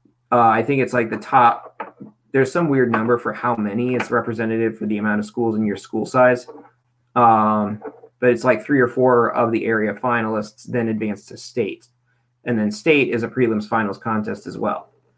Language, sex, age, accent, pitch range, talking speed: English, male, 20-39, American, 110-125 Hz, 200 wpm